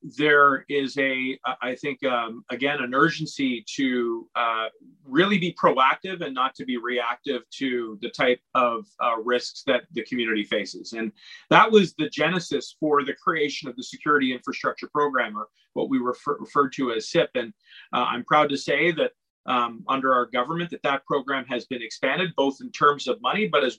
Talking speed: 185 wpm